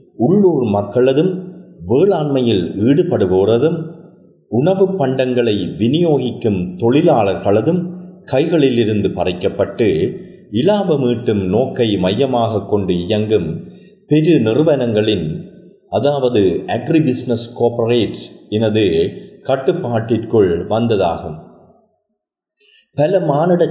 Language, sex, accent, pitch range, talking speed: Tamil, male, native, 105-155 Hz, 65 wpm